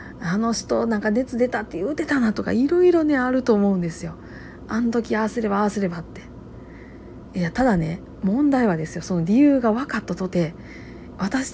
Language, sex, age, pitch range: Japanese, female, 40-59, 175-260 Hz